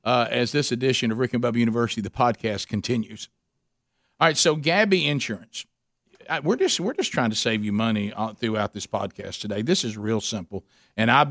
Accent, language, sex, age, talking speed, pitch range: American, English, male, 50-69, 190 wpm, 120-155 Hz